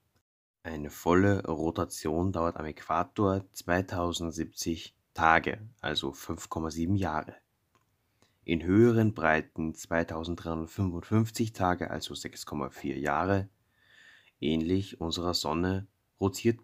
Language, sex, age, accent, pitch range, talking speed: German, male, 20-39, German, 80-100 Hz, 85 wpm